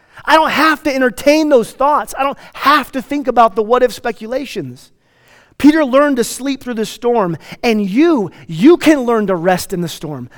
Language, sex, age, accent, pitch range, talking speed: English, male, 30-49, American, 160-240 Hz, 190 wpm